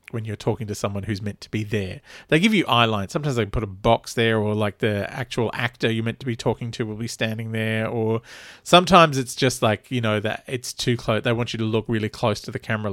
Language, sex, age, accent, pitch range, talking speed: English, male, 40-59, Australian, 110-150 Hz, 265 wpm